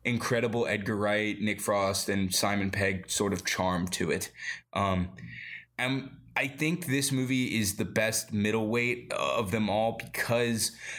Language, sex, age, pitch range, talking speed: English, male, 20-39, 100-120 Hz, 145 wpm